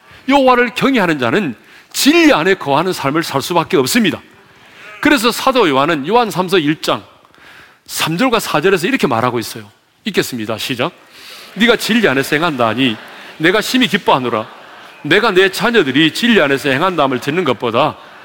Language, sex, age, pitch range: Korean, male, 40-59, 185-295 Hz